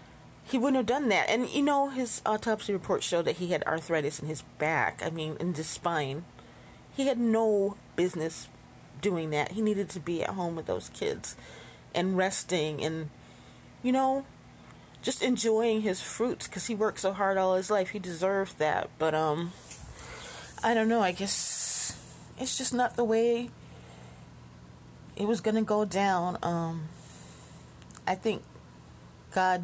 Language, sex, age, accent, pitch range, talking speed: English, female, 30-49, American, 160-215 Hz, 165 wpm